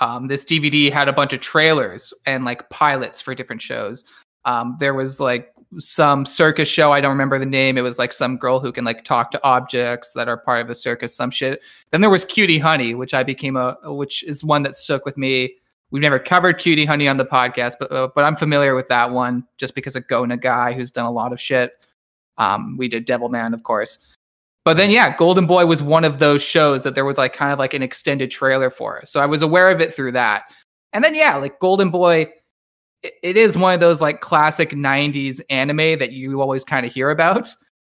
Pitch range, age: 130-155 Hz, 20-39